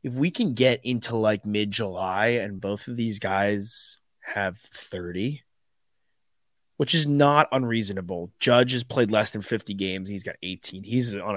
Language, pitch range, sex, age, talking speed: English, 100-115 Hz, male, 30-49, 165 wpm